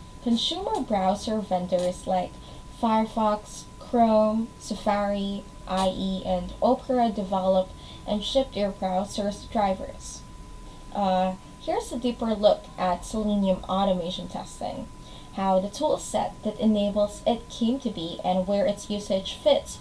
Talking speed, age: 120 wpm, 10-29